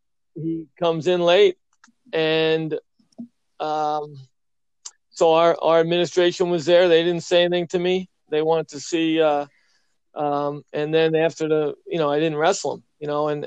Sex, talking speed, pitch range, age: male, 165 wpm, 150-170 Hz, 40-59